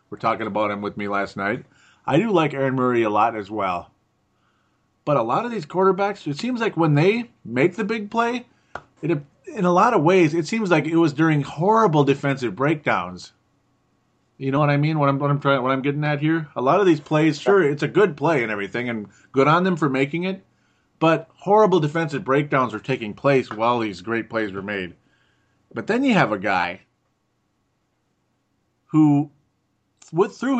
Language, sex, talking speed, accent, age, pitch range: English, male, 190 wpm, American, 30-49, 115-165 Hz